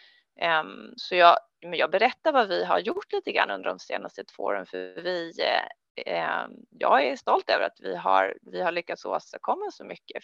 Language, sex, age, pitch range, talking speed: Swedish, female, 30-49, 170-235 Hz, 190 wpm